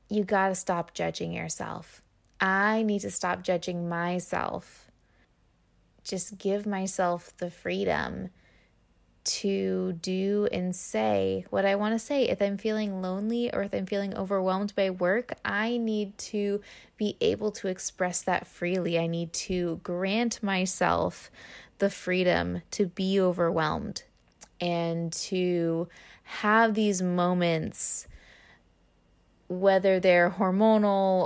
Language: English